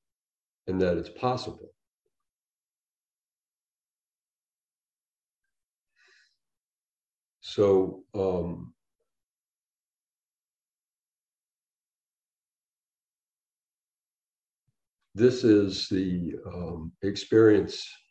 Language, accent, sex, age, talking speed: English, American, male, 60-79, 35 wpm